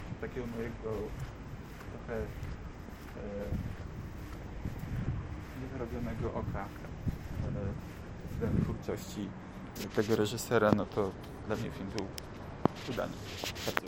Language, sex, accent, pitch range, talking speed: Polish, male, native, 95-115 Hz, 85 wpm